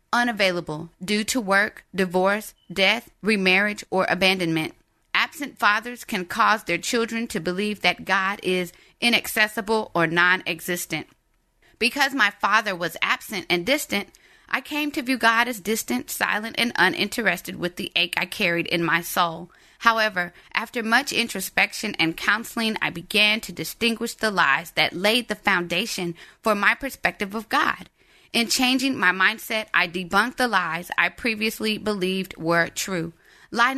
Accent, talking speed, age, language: American, 145 wpm, 30-49, English